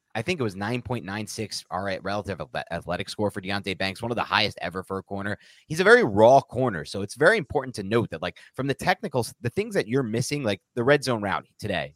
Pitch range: 95-140 Hz